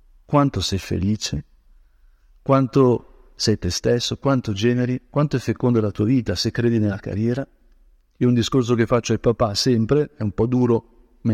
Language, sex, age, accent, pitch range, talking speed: Italian, male, 50-69, native, 100-135 Hz, 170 wpm